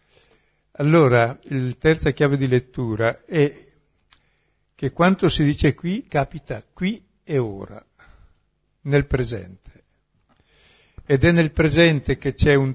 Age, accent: 60-79, native